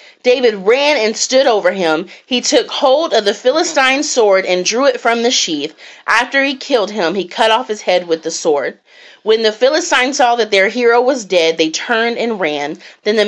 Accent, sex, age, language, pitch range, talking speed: American, female, 30-49, English, 185-250 Hz, 210 wpm